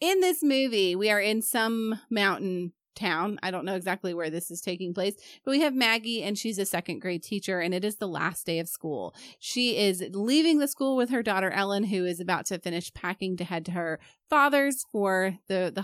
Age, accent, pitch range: 30-49, American, 175-225 Hz